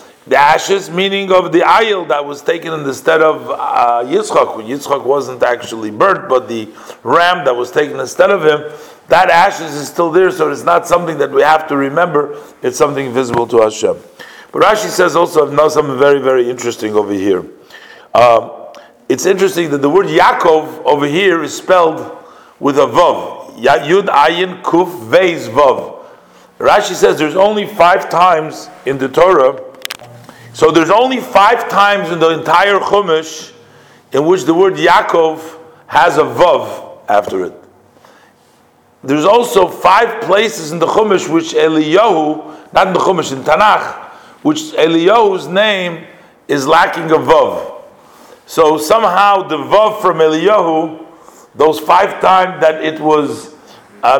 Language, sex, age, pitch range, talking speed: English, male, 50-69, 150-200 Hz, 155 wpm